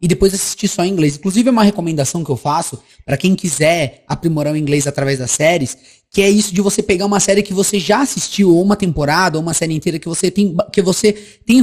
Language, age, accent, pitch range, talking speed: Portuguese, 20-39, Brazilian, 155-205 Hz, 245 wpm